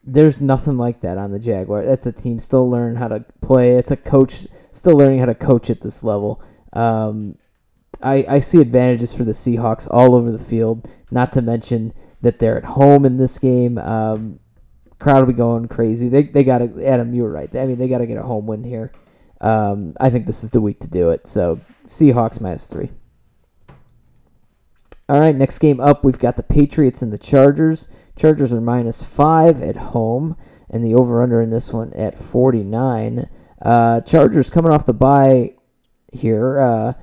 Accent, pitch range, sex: American, 115-135 Hz, male